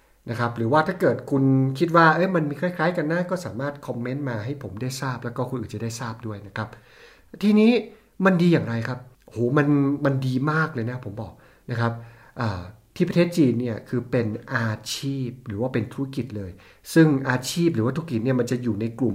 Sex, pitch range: male, 115-145 Hz